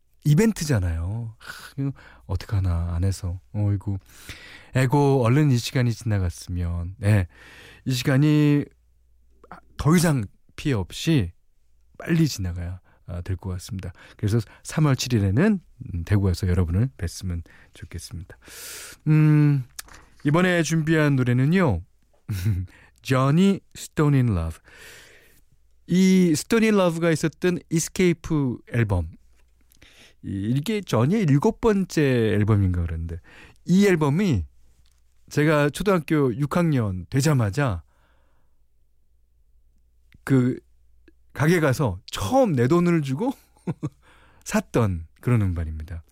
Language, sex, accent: Korean, male, native